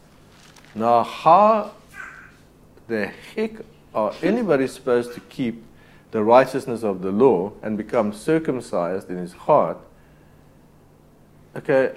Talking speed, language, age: 105 wpm, English, 60-79